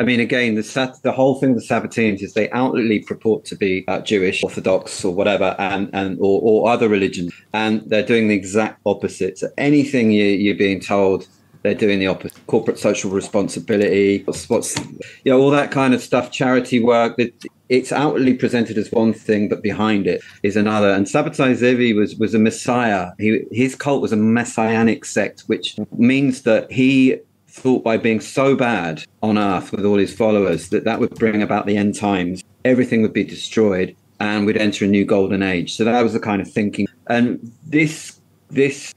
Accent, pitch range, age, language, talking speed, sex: British, 105-125 Hz, 30-49, English, 195 wpm, male